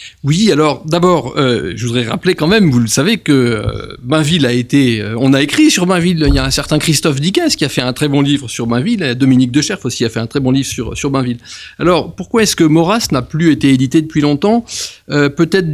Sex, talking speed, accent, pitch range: male, 250 wpm, French, 130-165 Hz